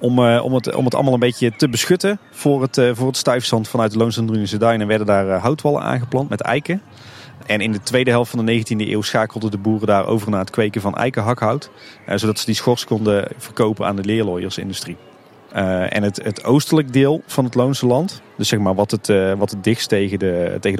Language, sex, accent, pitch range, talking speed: Dutch, male, Dutch, 105-125 Hz, 230 wpm